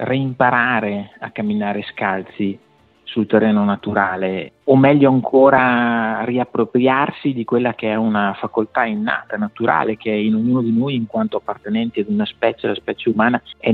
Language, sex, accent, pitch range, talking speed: Italian, male, native, 110-140 Hz, 155 wpm